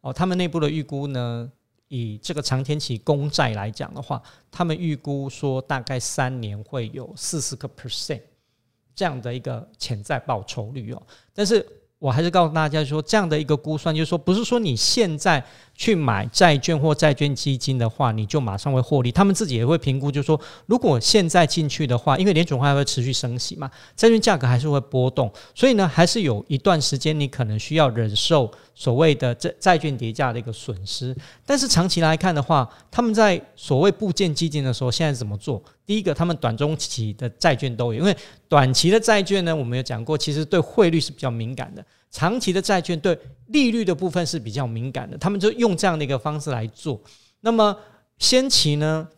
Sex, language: male, Chinese